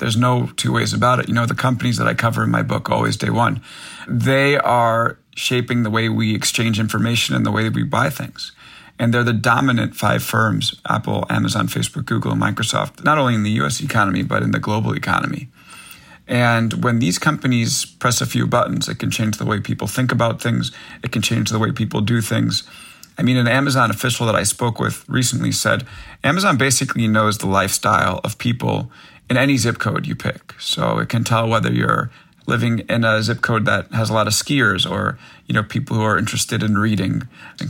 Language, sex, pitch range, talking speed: English, male, 110-125 Hz, 210 wpm